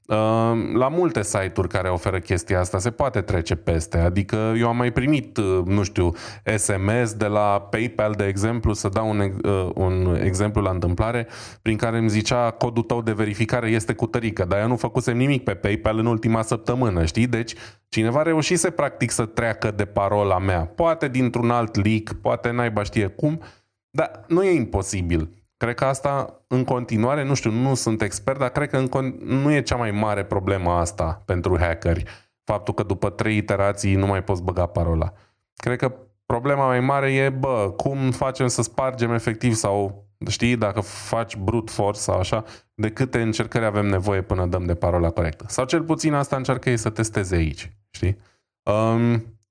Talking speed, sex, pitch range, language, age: 180 wpm, male, 100-120 Hz, Romanian, 20-39